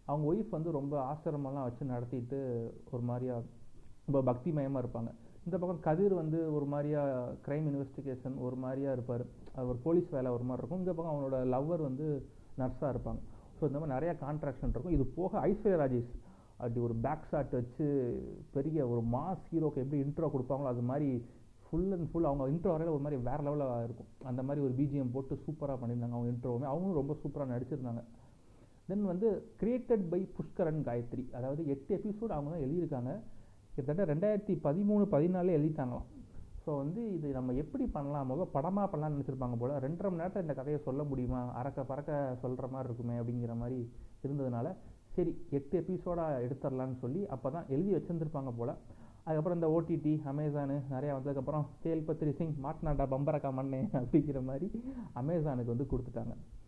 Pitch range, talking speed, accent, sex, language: 125-160 Hz, 160 wpm, native, male, Tamil